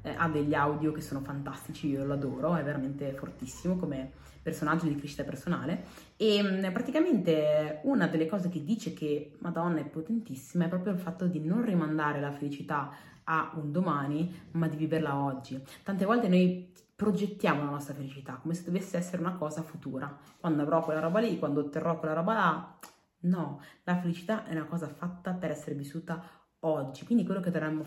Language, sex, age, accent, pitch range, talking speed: Italian, female, 30-49, native, 150-180 Hz, 180 wpm